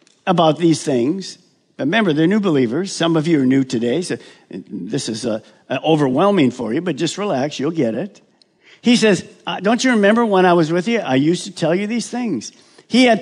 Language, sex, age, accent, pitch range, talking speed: English, male, 50-69, American, 150-205 Hz, 200 wpm